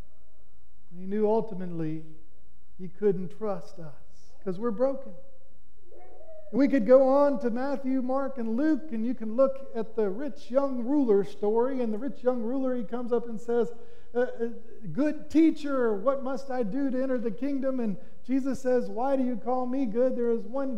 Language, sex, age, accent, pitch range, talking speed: English, male, 50-69, American, 215-260 Hz, 180 wpm